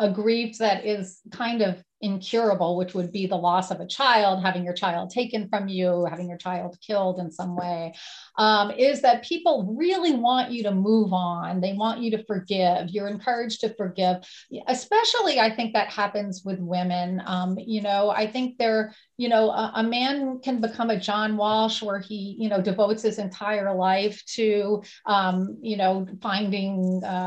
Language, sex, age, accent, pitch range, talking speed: English, female, 40-59, American, 195-235 Hz, 185 wpm